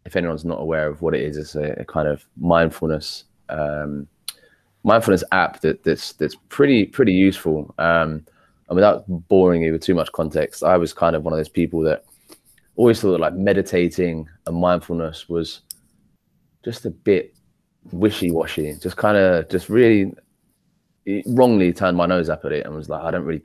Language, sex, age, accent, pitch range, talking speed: English, male, 20-39, British, 75-85 Hz, 185 wpm